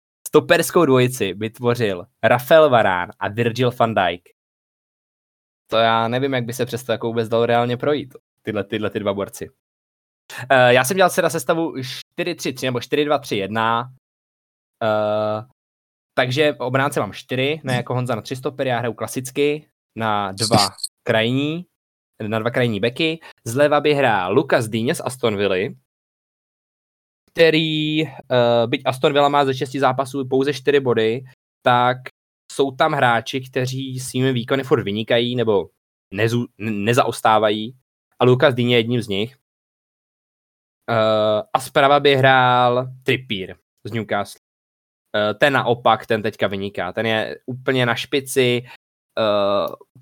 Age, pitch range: 20-39, 110-135 Hz